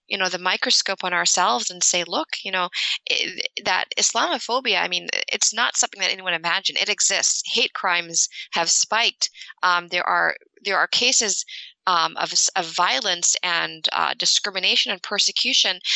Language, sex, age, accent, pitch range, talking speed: English, female, 20-39, American, 180-220 Hz, 160 wpm